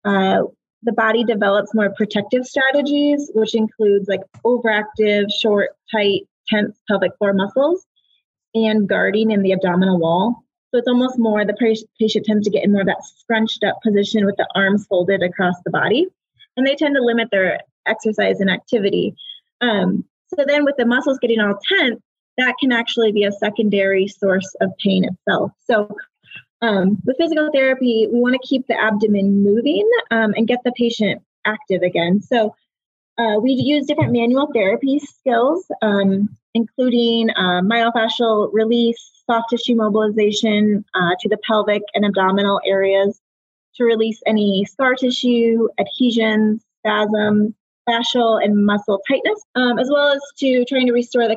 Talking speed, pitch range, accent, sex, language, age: 160 wpm, 205-245 Hz, American, female, English, 20-39